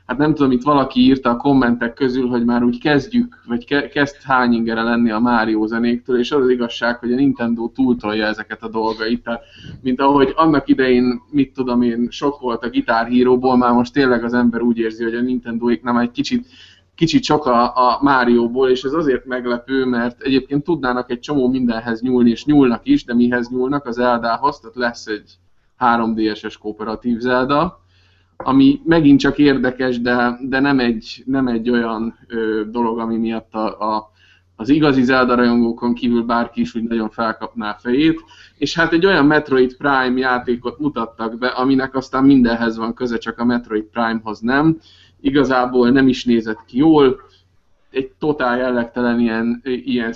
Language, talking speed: Hungarian, 165 wpm